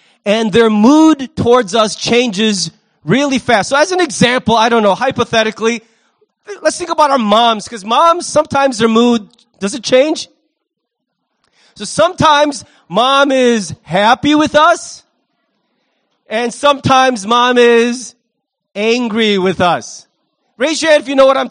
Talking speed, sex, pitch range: 140 wpm, male, 225-285 Hz